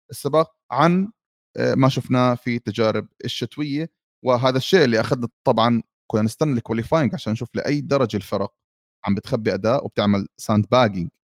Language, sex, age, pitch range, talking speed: Arabic, male, 30-49, 110-145 Hz, 135 wpm